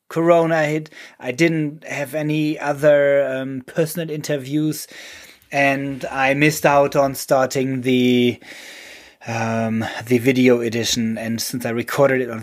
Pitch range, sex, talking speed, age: 125-155 Hz, male, 130 wpm, 30-49